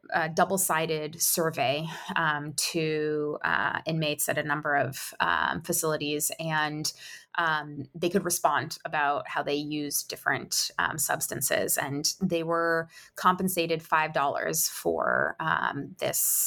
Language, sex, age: English, female, 20-39